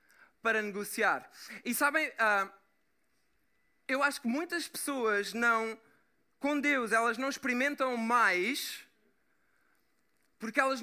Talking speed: 100 wpm